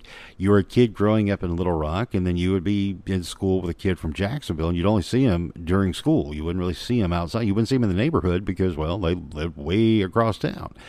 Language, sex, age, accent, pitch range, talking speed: English, male, 50-69, American, 90-115 Hz, 265 wpm